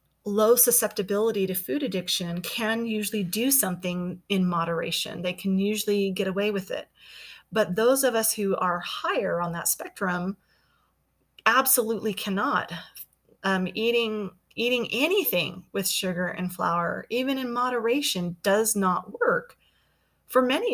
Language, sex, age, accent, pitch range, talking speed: English, female, 30-49, American, 180-220 Hz, 135 wpm